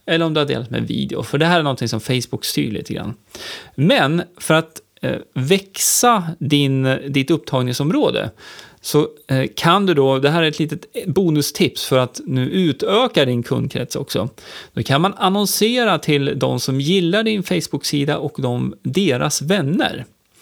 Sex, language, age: male, Swedish, 30-49